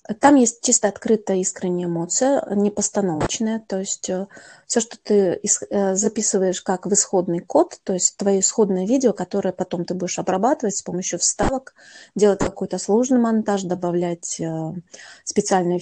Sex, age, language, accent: female, 30-49, Russian, native